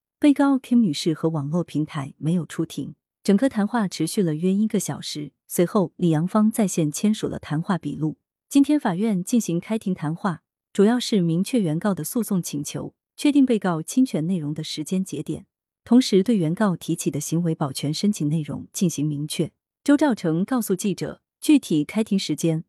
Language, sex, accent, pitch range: Chinese, female, native, 160-220 Hz